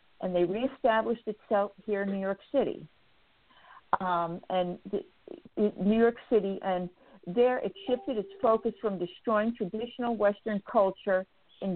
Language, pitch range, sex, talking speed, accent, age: English, 185-230 Hz, female, 135 wpm, American, 50-69